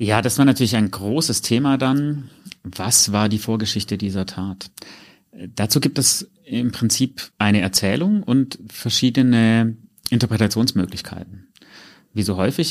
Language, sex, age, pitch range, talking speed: German, male, 30-49, 90-115 Hz, 125 wpm